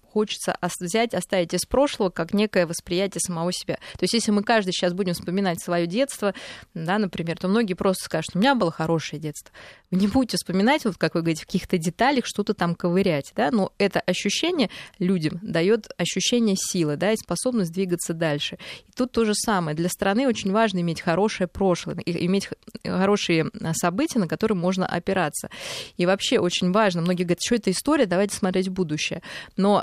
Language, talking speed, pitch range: Russian, 185 wpm, 175-215 Hz